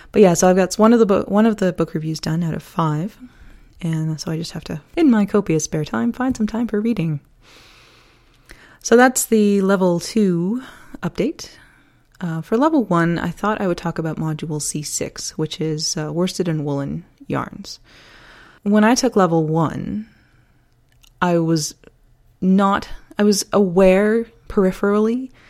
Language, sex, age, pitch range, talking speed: English, female, 20-39, 150-200 Hz, 160 wpm